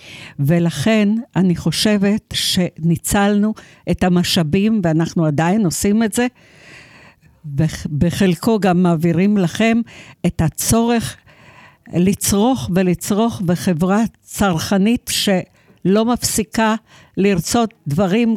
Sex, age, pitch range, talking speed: female, 60-79, 170-215 Hz, 80 wpm